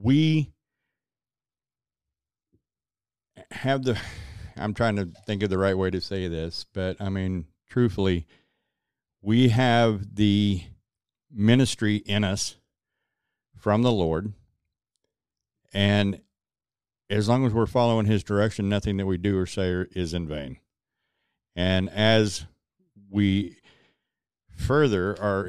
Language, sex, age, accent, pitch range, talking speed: English, male, 50-69, American, 95-110 Hz, 115 wpm